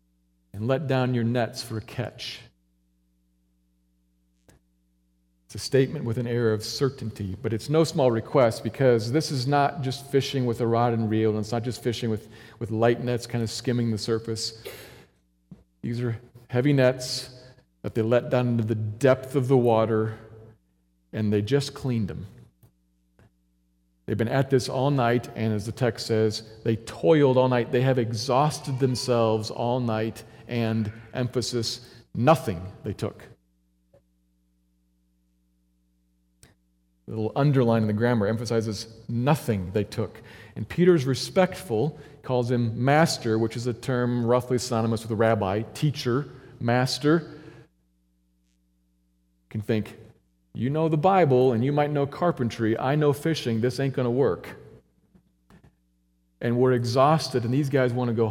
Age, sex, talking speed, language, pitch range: 40-59, male, 150 wpm, English, 100-130 Hz